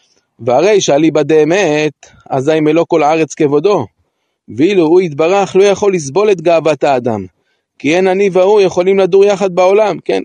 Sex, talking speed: male, 160 wpm